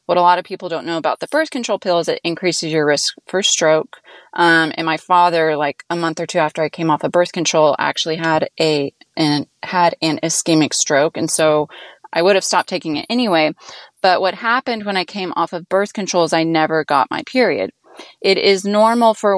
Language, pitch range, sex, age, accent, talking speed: English, 160-200 Hz, female, 20-39, American, 225 wpm